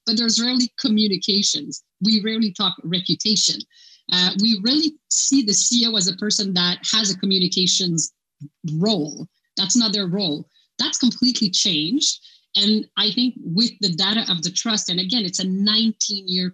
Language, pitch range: English, 170-225 Hz